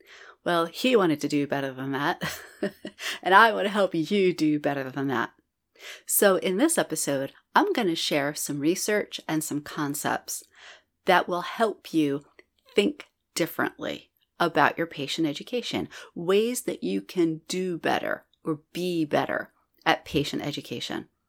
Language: English